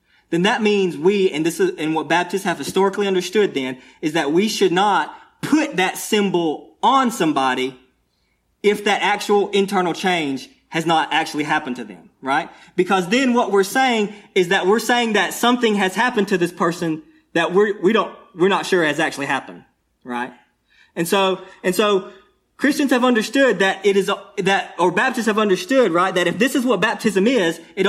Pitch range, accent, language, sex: 180-220 Hz, American, English, male